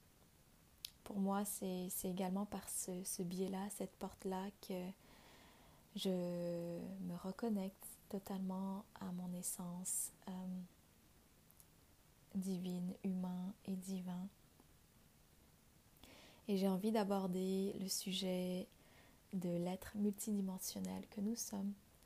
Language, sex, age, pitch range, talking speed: French, female, 20-39, 185-205 Hz, 95 wpm